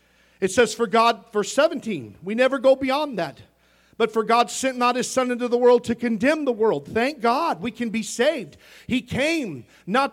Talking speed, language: 200 wpm, English